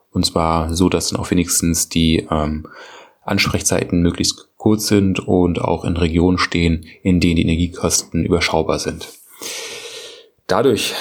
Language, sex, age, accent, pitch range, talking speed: German, male, 30-49, German, 85-100 Hz, 135 wpm